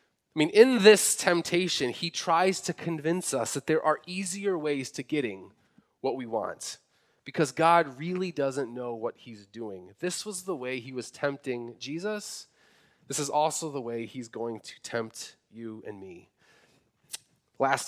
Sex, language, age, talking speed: male, English, 30-49, 165 wpm